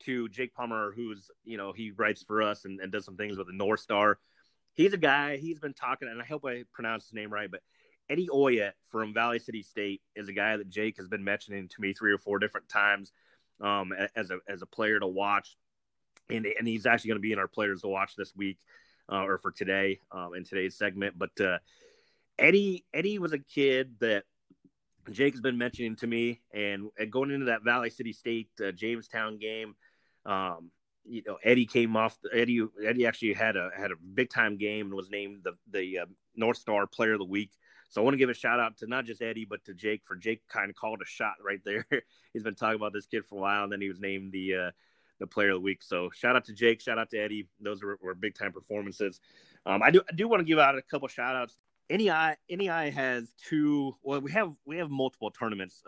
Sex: male